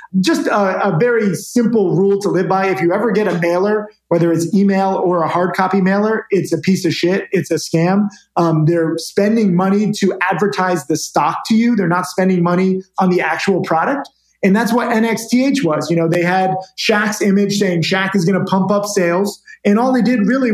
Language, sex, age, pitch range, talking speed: English, male, 30-49, 175-210 Hz, 215 wpm